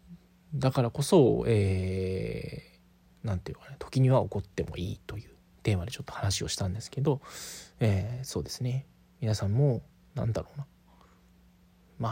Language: Japanese